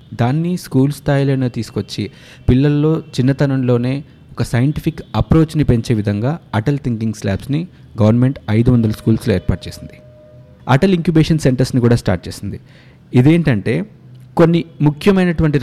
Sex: male